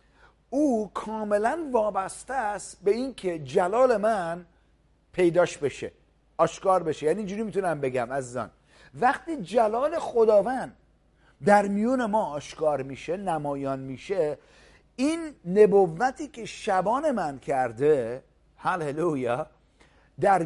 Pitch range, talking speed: 160-230 Hz, 110 wpm